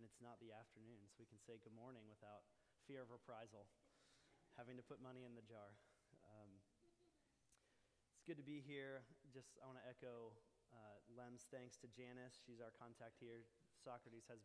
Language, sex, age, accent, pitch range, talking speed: English, male, 20-39, American, 115-135 Hz, 180 wpm